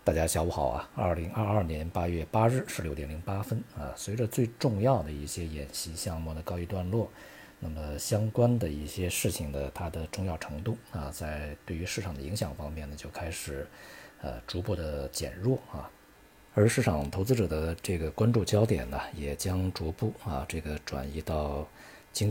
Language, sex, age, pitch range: Chinese, male, 50-69, 75-105 Hz